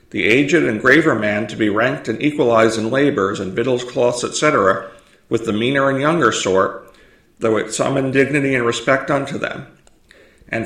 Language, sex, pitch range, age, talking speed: English, male, 115-140 Hz, 50-69, 175 wpm